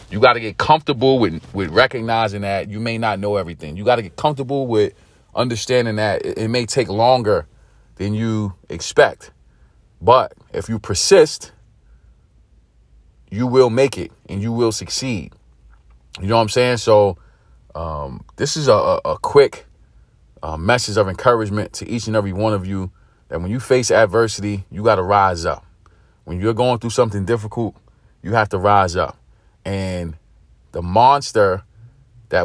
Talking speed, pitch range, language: 165 wpm, 90-115 Hz, English